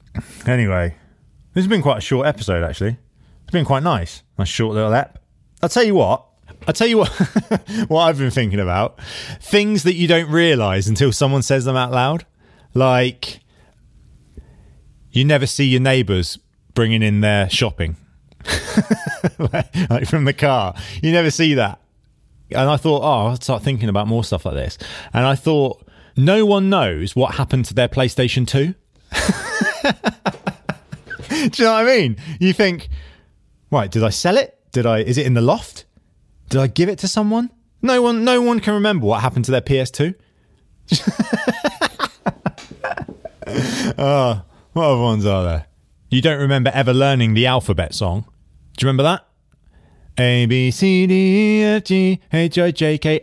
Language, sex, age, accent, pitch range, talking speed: English, male, 30-49, British, 115-175 Hz, 170 wpm